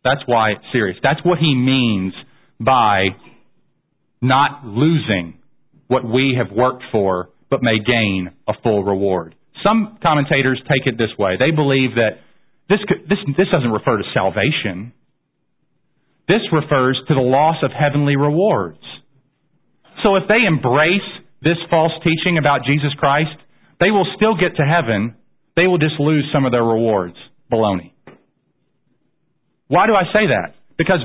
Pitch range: 130-200 Hz